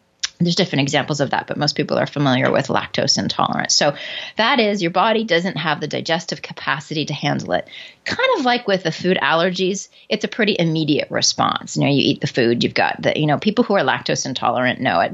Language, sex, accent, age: English, female, American, 30-49